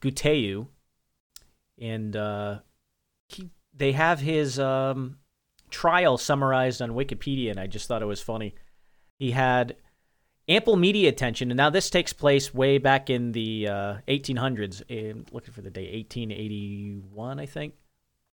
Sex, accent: male, American